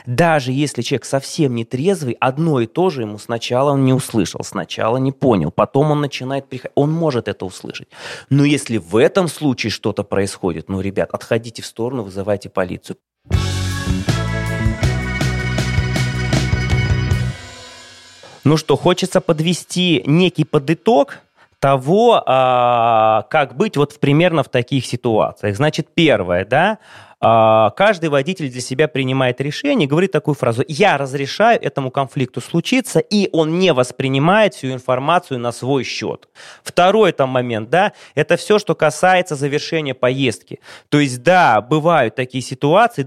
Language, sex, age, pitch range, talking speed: Russian, male, 20-39, 120-155 Hz, 135 wpm